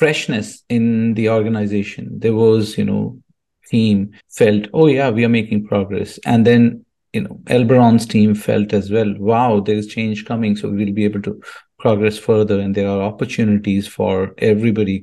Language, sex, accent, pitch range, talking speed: English, male, Indian, 100-115 Hz, 170 wpm